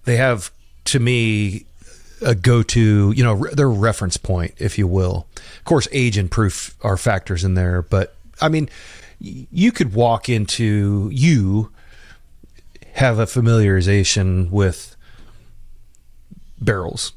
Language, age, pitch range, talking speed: English, 30-49, 95-115 Hz, 135 wpm